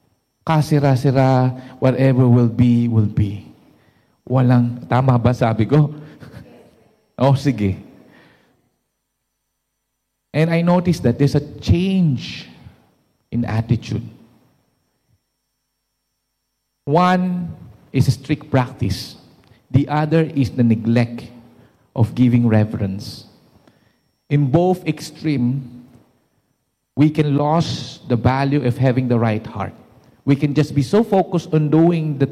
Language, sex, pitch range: English, male, 120-150 Hz